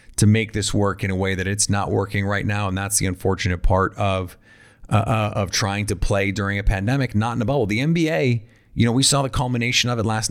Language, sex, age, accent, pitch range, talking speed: English, male, 30-49, American, 100-115 Hz, 250 wpm